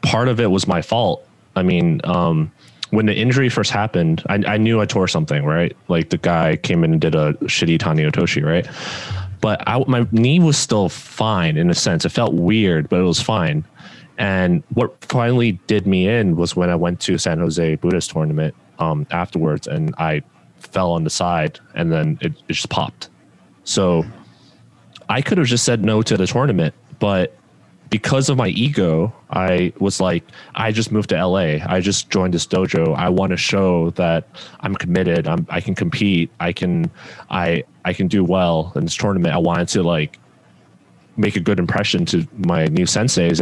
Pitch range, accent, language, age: 85-110 Hz, American, English, 20-39